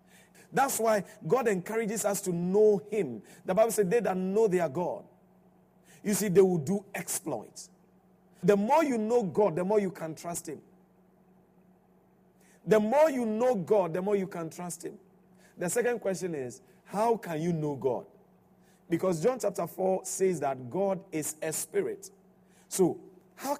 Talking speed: 165 wpm